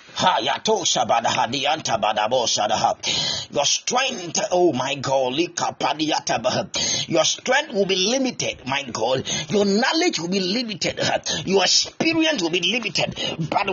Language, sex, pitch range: English, male, 190-290 Hz